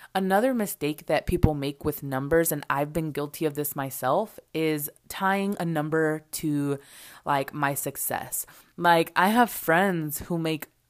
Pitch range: 150-195 Hz